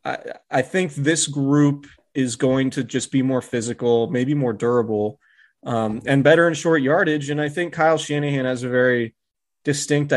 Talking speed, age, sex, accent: 175 wpm, 20-39, male, American